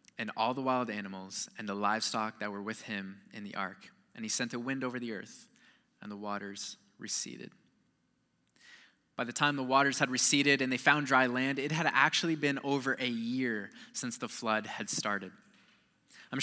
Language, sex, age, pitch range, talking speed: English, male, 20-39, 115-145 Hz, 190 wpm